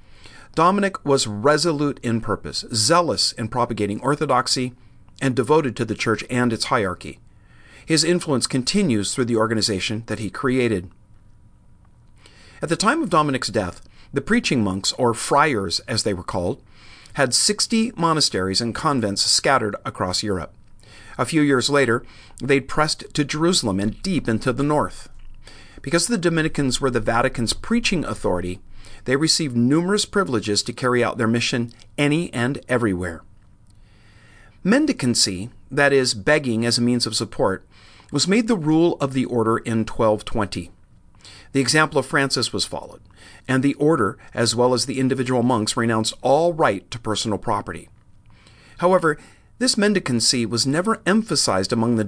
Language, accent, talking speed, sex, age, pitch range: English, American, 150 wpm, male, 50-69, 105-145 Hz